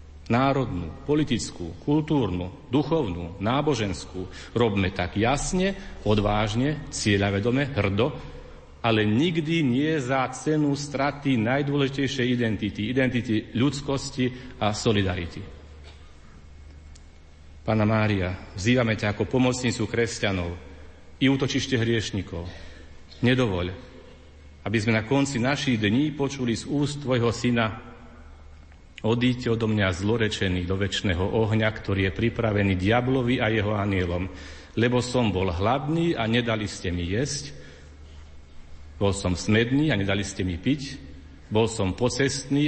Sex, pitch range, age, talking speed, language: male, 90-130 Hz, 40-59, 110 wpm, Slovak